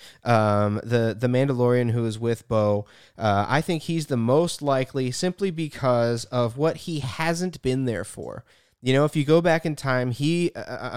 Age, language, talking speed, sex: 30-49, English, 185 wpm, male